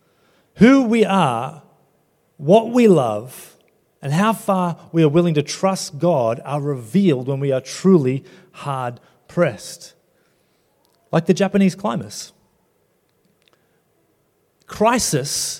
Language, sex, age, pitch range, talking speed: English, male, 30-49, 145-185 Hz, 105 wpm